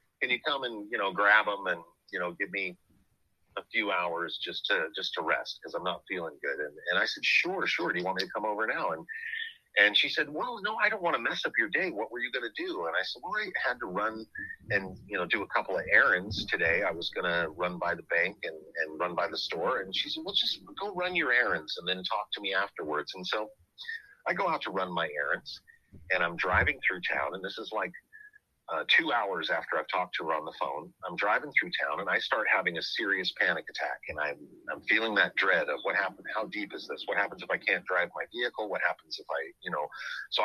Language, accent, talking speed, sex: English, American, 260 wpm, male